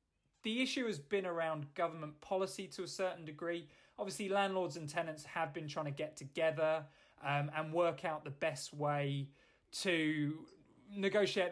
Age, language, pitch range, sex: 20-39, English, 145-175 Hz, male